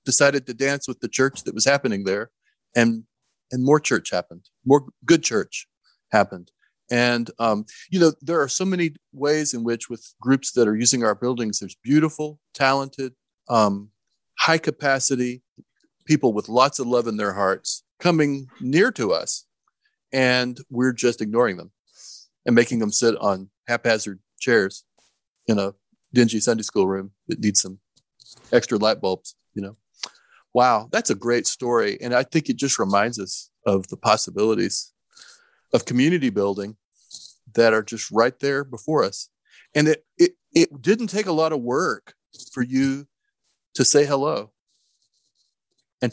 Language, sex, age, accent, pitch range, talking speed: English, male, 40-59, American, 115-150 Hz, 160 wpm